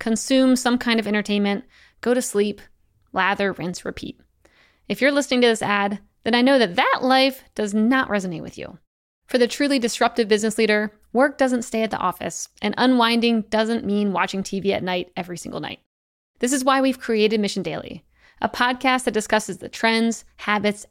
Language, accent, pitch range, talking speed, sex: English, American, 210-255 Hz, 185 wpm, female